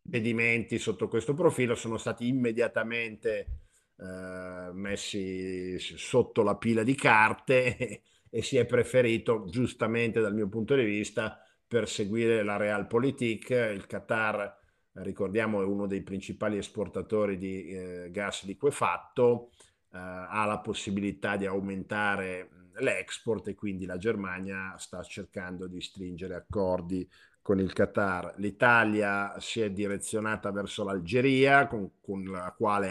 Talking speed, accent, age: 125 wpm, native, 50-69